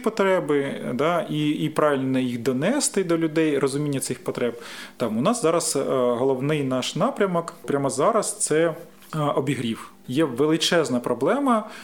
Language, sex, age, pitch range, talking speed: Ukrainian, male, 30-49, 145-200 Hz, 130 wpm